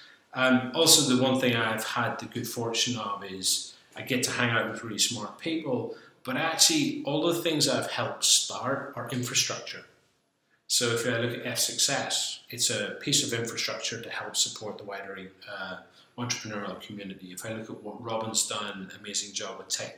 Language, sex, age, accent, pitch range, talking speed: English, male, 30-49, British, 105-130 Hz, 180 wpm